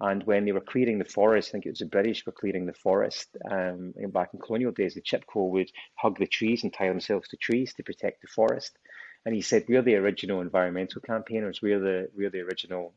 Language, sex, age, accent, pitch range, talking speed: English, male, 30-49, British, 95-110 Hz, 250 wpm